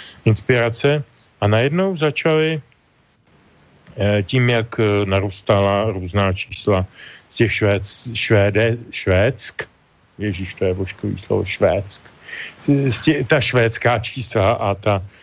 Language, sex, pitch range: Slovak, male, 100-120 Hz